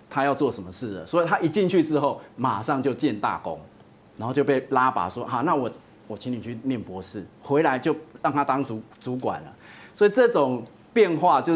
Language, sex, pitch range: Chinese, male, 120-160 Hz